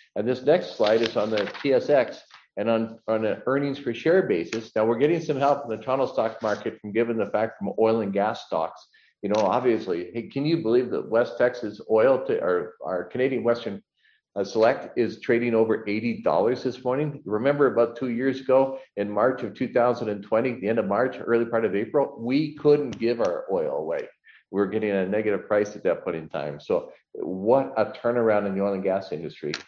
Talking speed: 205 wpm